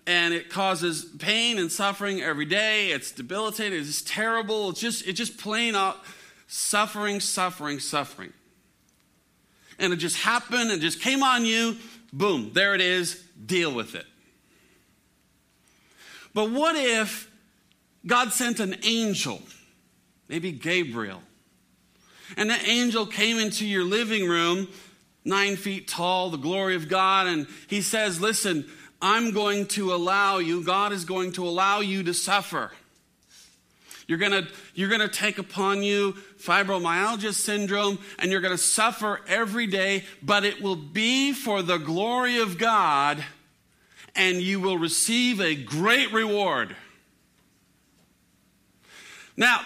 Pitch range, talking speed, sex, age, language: 185-225 Hz, 135 wpm, male, 40-59, English